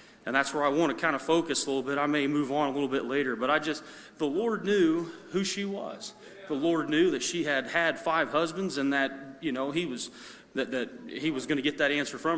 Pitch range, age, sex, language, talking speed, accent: 140-170 Hz, 30-49, male, English, 260 wpm, American